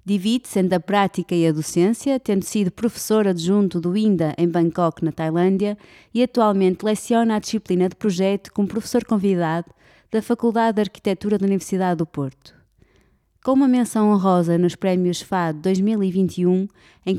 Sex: female